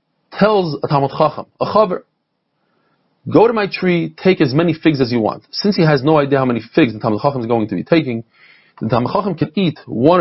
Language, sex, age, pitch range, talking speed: English, male, 30-49, 140-185 Hz, 225 wpm